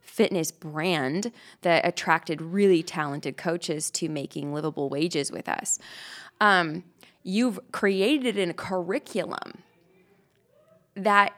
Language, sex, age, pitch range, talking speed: English, female, 20-39, 175-215 Hz, 100 wpm